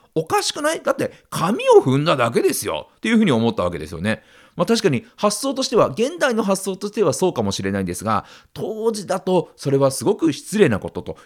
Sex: male